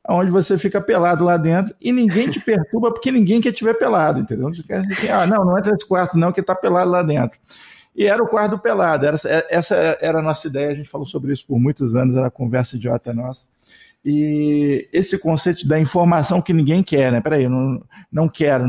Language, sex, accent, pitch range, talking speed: Portuguese, male, Brazilian, 135-185 Hz, 230 wpm